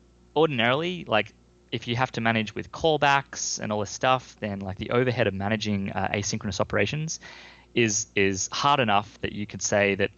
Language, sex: English, male